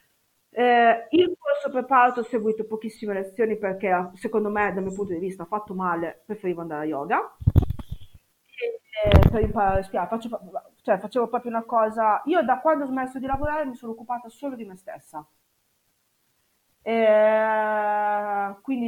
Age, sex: 30-49, female